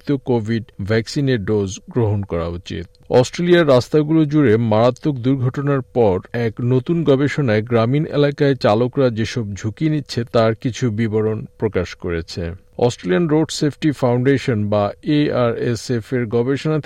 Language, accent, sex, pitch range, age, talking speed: Bengali, native, male, 105-135 Hz, 50-69, 115 wpm